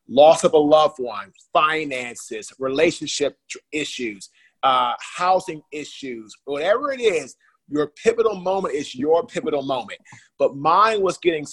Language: English